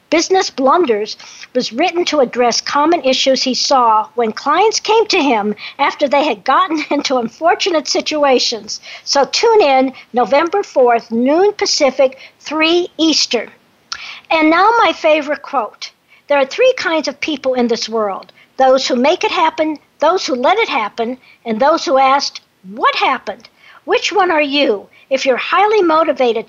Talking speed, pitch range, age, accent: 155 wpm, 255-345 Hz, 50-69, American